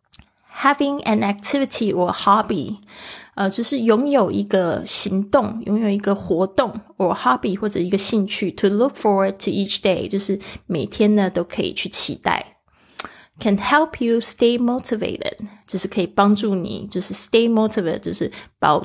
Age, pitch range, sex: 20-39, 185-220 Hz, female